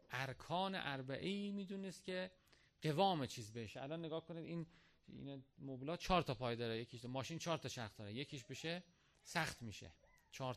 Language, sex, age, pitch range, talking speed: Persian, male, 40-59, 125-175 Hz, 150 wpm